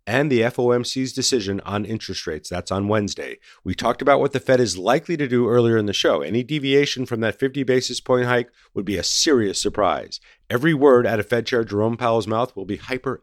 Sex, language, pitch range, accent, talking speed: male, English, 105-125 Hz, American, 220 wpm